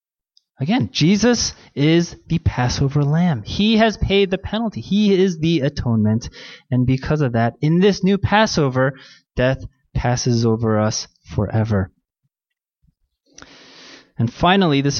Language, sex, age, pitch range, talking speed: English, male, 20-39, 130-175 Hz, 125 wpm